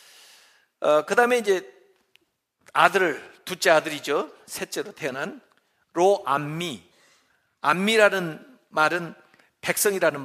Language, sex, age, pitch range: Korean, male, 50-69, 135-215 Hz